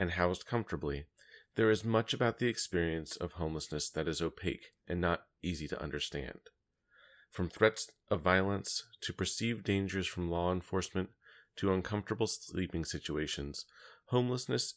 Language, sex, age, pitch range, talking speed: English, male, 30-49, 85-100 Hz, 140 wpm